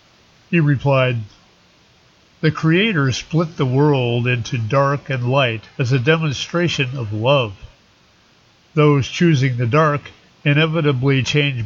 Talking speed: 115 wpm